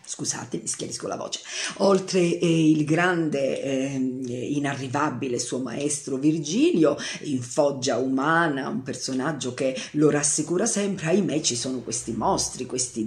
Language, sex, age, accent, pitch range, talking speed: Italian, female, 40-59, native, 135-180 Hz, 135 wpm